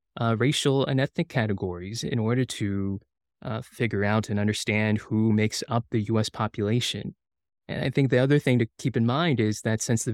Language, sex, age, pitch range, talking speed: English, male, 20-39, 110-130 Hz, 195 wpm